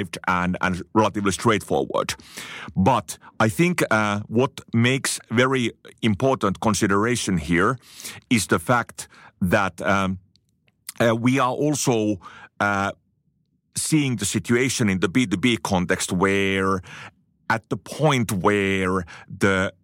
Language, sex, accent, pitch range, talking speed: Finnish, male, native, 100-130 Hz, 110 wpm